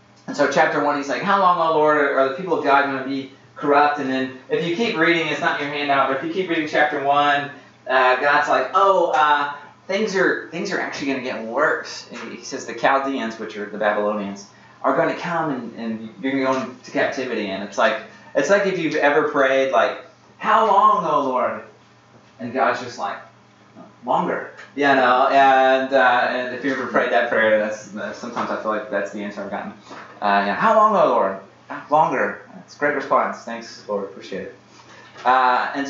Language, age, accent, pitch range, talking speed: English, 30-49, American, 120-150 Hz, 225 wpm